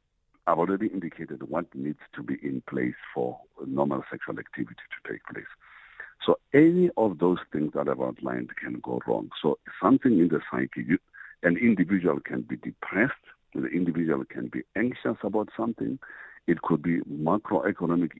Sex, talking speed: male, 160 wpm